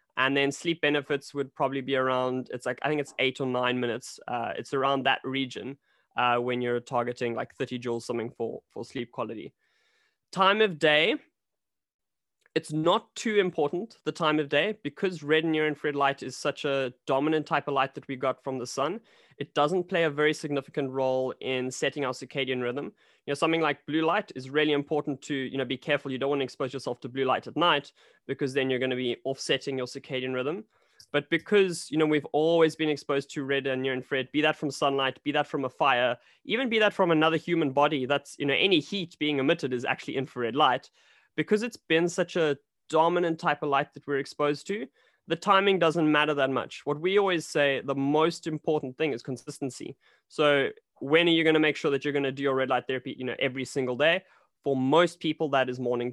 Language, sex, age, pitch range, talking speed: English, male, 20-39, 130-155 Hz, 220 wpm